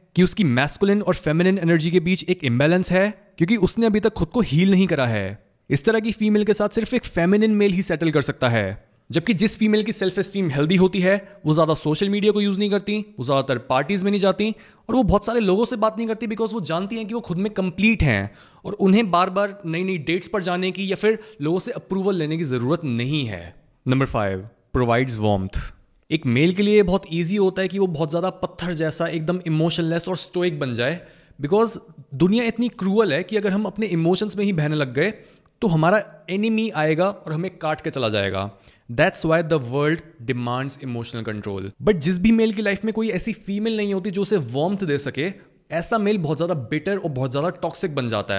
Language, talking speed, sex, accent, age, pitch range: Hindi, 225 wpm, male, native, 20-39, 145-205 Hz